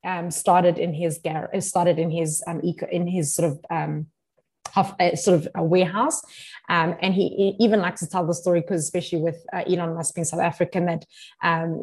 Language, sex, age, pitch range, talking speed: English, female, 20-39, 165-185 Hz, 210 wpm